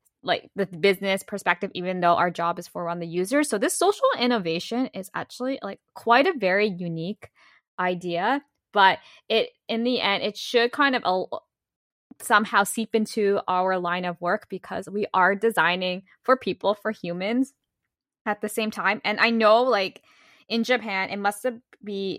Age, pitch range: 10-29, 180-235 Hz